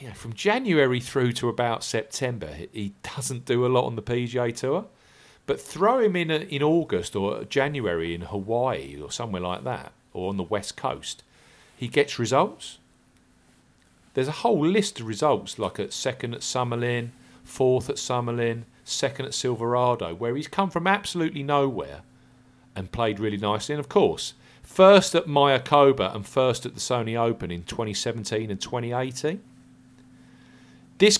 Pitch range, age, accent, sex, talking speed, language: 110-135 Hz, 40-59, British, male, 155 wpm, English